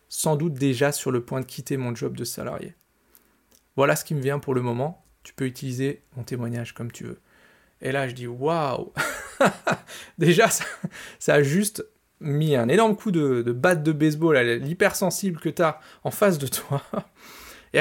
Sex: male